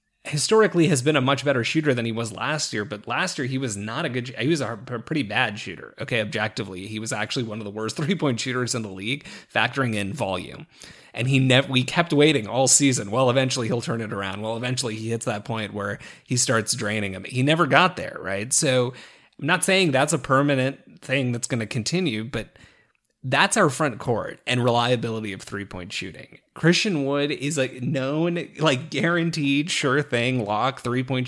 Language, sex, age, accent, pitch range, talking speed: English, male, 30-49, American, 110-140 Hz, 205 wpm